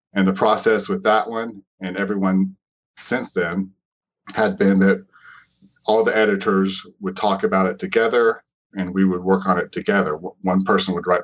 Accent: American